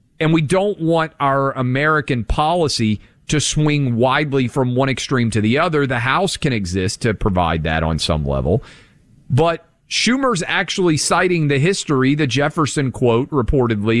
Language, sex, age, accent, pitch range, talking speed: English, male, 40-59, American, 115-155 Hz, 155 wpm